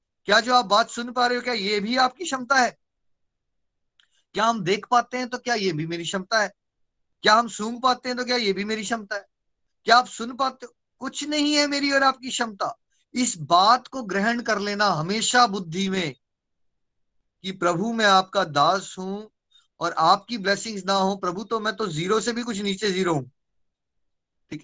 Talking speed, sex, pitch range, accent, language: 195 wpm, male, 180-235 Hz, native, Hindi